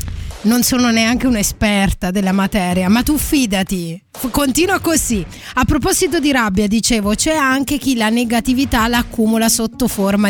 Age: 20-39